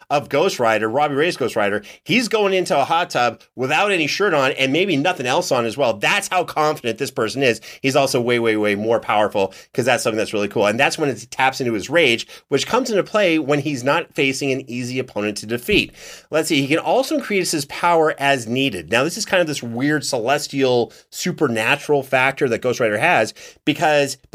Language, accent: English, American